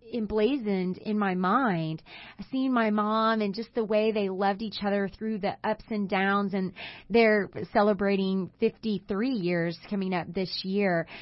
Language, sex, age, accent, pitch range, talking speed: English, female, 30-49, American, 185-235 Hz, 155 wpm